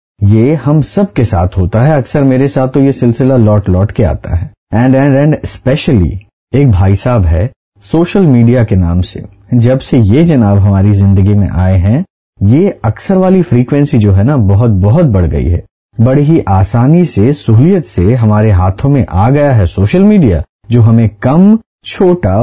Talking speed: 185 wpm